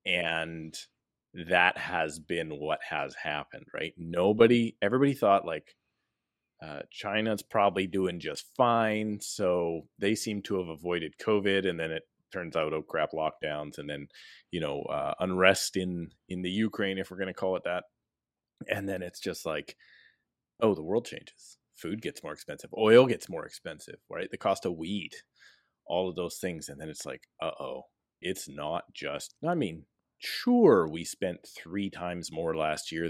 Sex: male